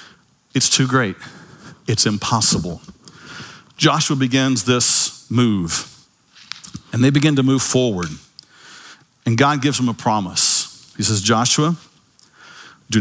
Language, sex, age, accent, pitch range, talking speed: English, male, 50-69, American, 110-140 Hz, 115 wpm